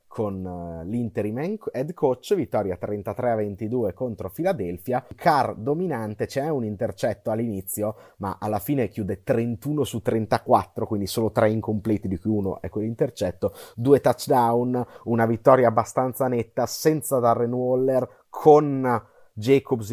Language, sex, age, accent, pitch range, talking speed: Italian, male, 30-49, native, 105-125 Hz, 130 wpm